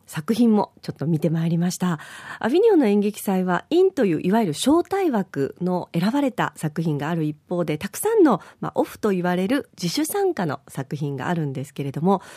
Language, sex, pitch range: Japanese, female, 170-250 Hz